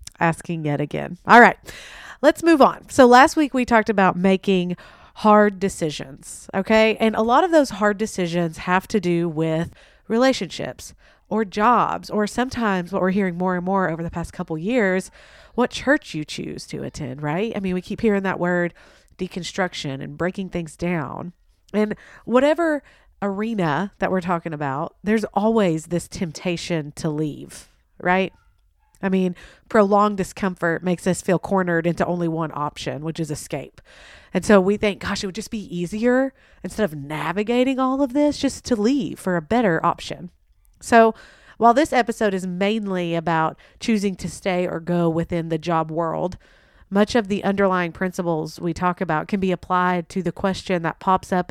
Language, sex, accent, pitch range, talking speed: English, female, American, 170-215 Hz, 175 wpm